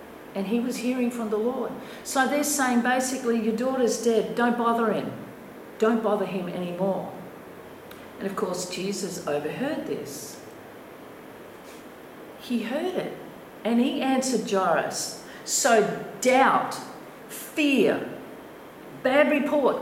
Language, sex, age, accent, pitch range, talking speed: English, female, 50-69, Australian, 220-290 Hz, 120 wpm